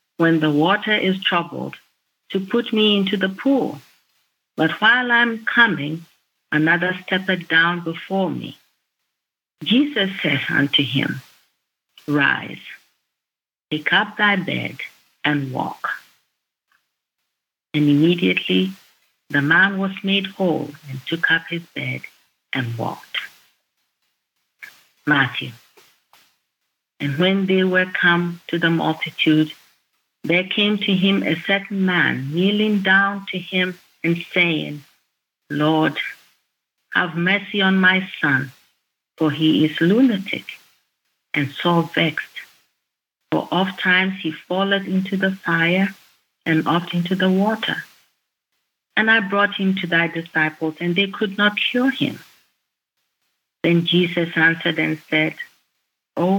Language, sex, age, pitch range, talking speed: English, female, 50-69, 155-195 Hz, 120 wpm